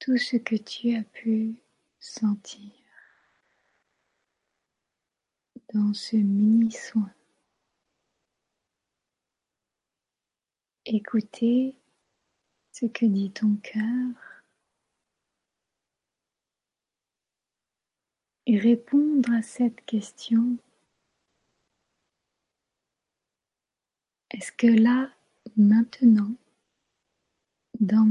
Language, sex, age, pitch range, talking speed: French, female, 30-49, 220-245 Hz, 55 wpm